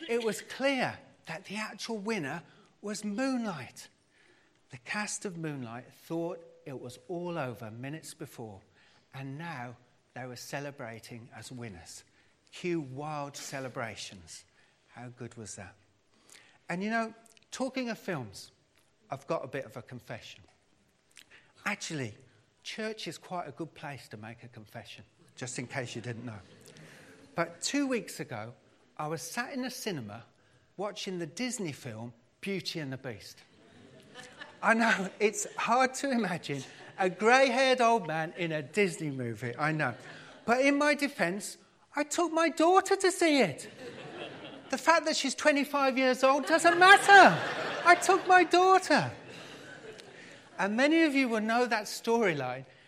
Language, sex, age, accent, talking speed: English, male, 40-59, British, 150 wpm